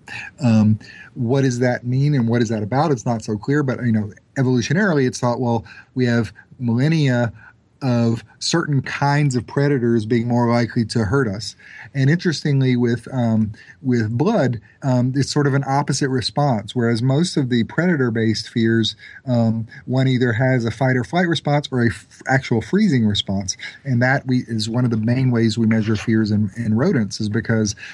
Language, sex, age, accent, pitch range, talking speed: English, male, 30-49, American, 110-130 Hz, 185 wpm